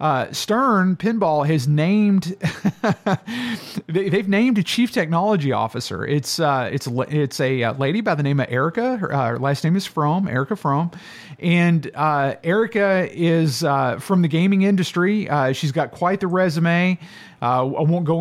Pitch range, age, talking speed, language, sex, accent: 135-175 Hz, 40-59, 170 wpm, English, male, American